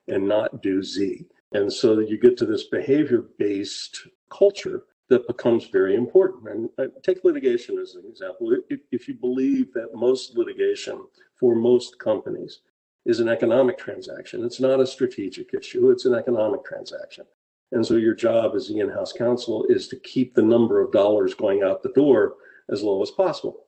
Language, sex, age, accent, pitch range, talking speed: English, male, 50-69, American, 295-385 Hz, 175 wpm